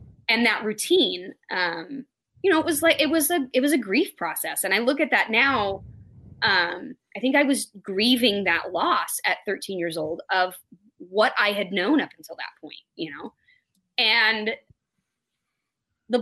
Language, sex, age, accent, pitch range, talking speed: English, female, 20-39, American, 200-300 Hz, 180 wpm